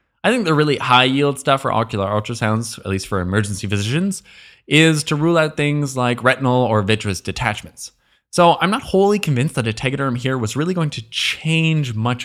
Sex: male